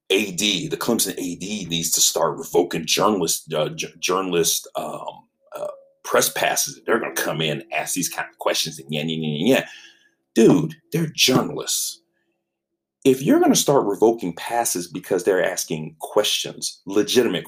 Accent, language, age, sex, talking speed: American, English, 40-59, male, 160 wpm